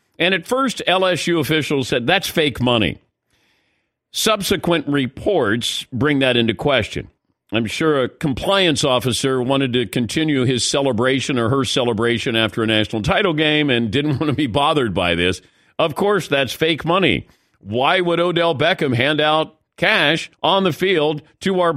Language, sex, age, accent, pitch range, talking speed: English, male, 50-69, American, 115-165 Hz, 160 wpm